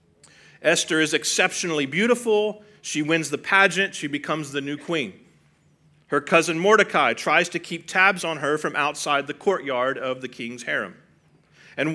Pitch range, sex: 150-195 Hz, male